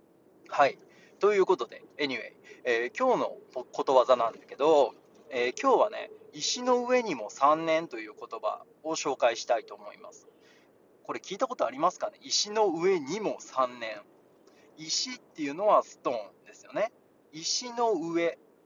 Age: 20-39